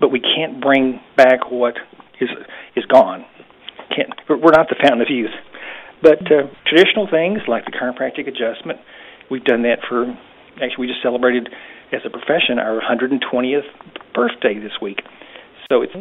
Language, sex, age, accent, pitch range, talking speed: English, male, 50-69, American, 115-135 Hz, 155 wpm